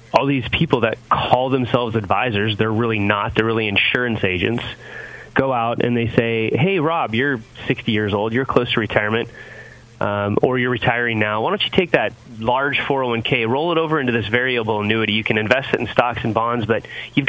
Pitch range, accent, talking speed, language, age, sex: 110-130 Hz, American, 200 wpm, English, 30-49, male